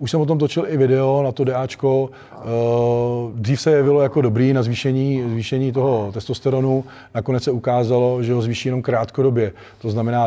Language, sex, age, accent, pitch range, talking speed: Czech, male, 40-59, native, 100-125 Hz, 175 wpm